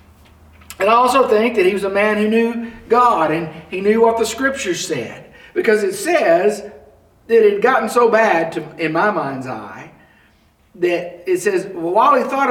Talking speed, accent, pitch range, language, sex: 190 wpm, American, 180-250 Hz, English, male